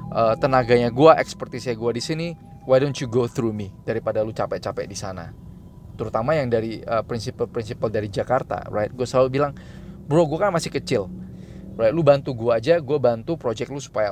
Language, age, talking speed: Indonesian, 20-39, 185 wpm